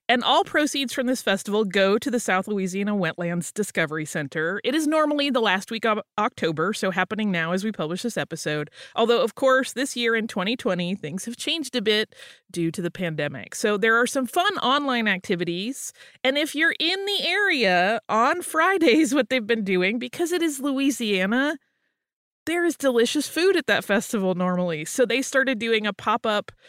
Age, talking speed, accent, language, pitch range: 30-49, 185 wpm, American, English, 185-255 Hz